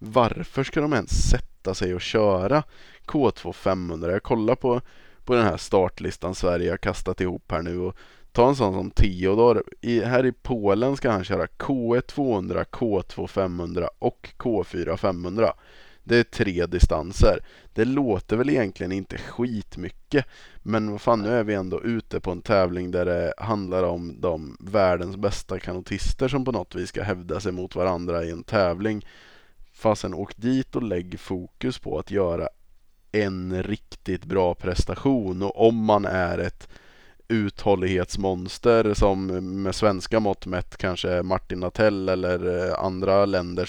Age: 20-39